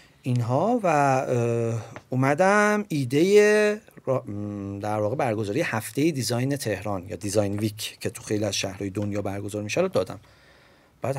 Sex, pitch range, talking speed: male, 105-150 Hz, 135 wpm